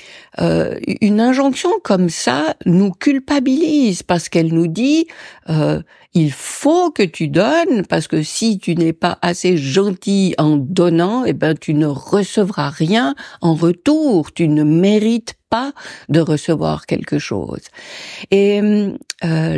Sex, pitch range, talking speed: female, 155-210 Hz, 140 wpm